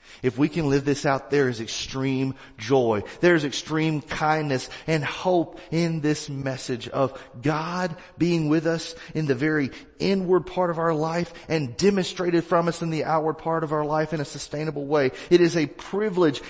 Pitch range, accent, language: 125-165 Hz, American, English